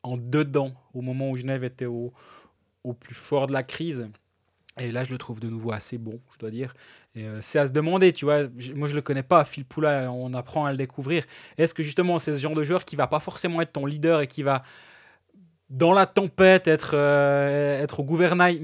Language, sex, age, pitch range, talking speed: French, male, 20-39, 125-155 Hz, 240 wpm